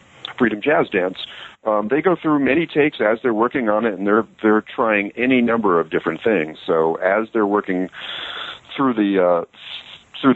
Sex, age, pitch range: male, 40-59, 90-115 Hz